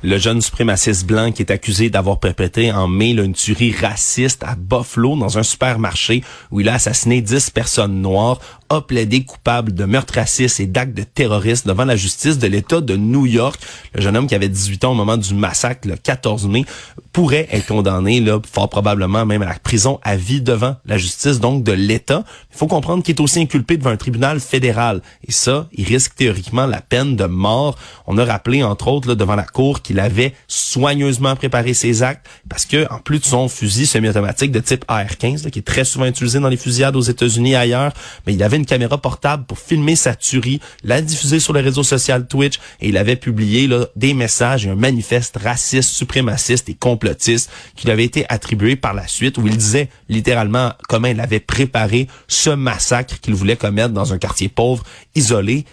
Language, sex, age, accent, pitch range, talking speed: French, male, 30-49, Canadian, 105-130 Hz, 210 wpm